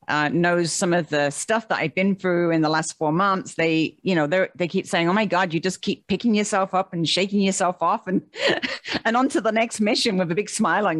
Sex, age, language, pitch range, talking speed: female, 40-59, English, 155-195 Hz, 250 wpm